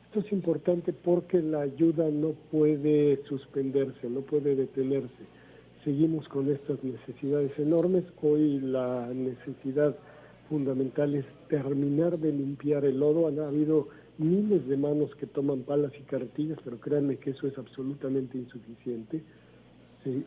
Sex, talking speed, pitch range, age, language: male, 135 wpm, 130-150 Hz, 50-69, Spanish